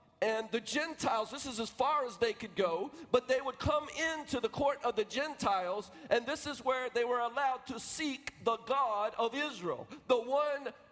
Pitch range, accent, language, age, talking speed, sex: 210-280 Hz, American, English, 50-69, 200 wpm, male